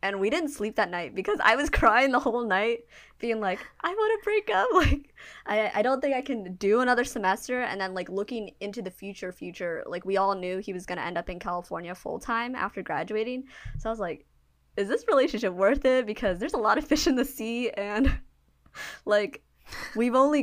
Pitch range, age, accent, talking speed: 185-235 Hz, 20-39, American, 225 wpm